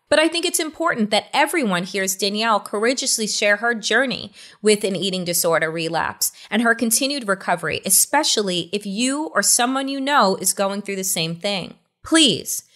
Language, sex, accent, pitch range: English, female, American, 165-230 Hz